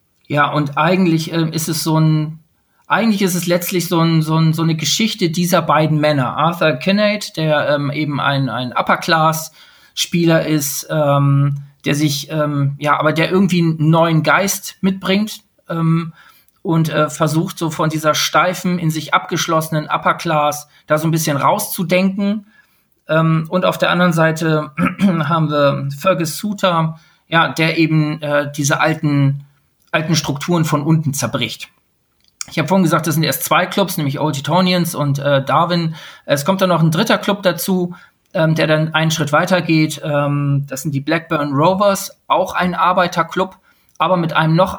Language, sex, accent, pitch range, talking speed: German, male, German, 150-175 Hz, 165 wpm